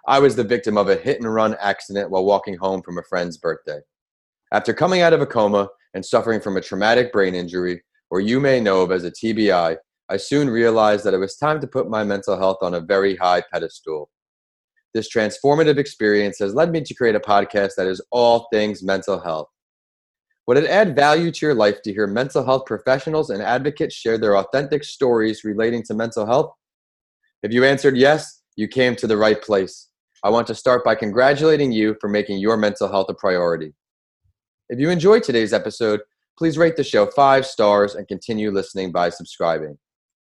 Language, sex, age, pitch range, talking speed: English, male, 30-49, 100-135 Hz, 195 wpm